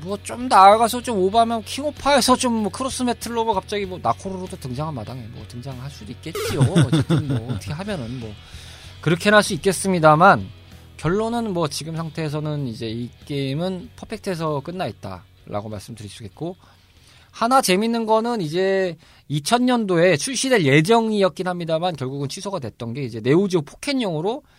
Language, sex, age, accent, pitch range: Korean, male, 20-39, native, 125-200 Hz